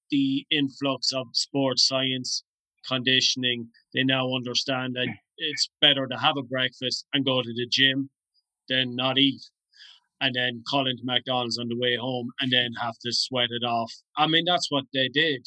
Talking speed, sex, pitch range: 180 wpm, male, 125-140 Hz